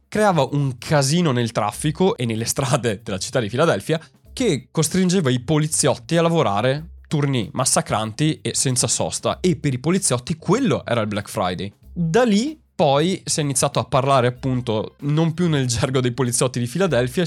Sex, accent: male, native